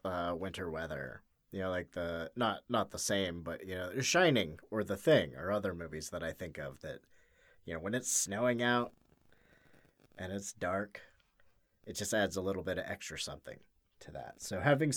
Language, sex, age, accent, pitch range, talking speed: English, male, 30-49, American, 90-130 Hz, 195 wpm